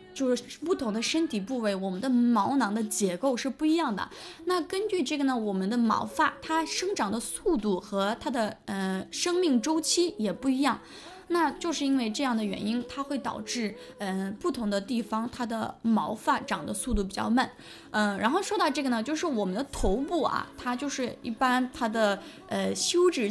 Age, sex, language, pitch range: 20-39, female, Chinese, 215-295 Hz